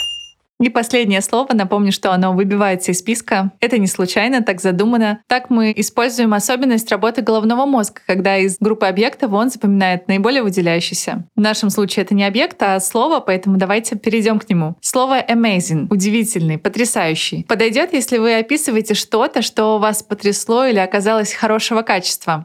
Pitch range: 190-235 Hz